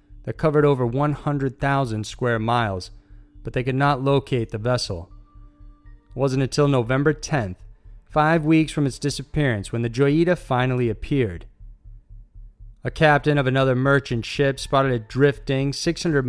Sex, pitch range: male, 110-140 Hz